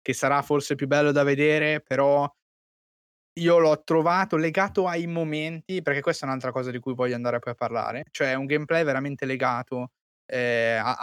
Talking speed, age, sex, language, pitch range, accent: 180 wpm, 20-39, male, Italian, 125-155 Hz, native